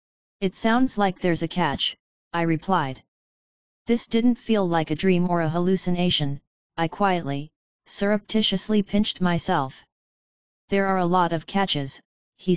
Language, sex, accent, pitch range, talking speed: English, female, American, 160-195 Hz, 140 wpm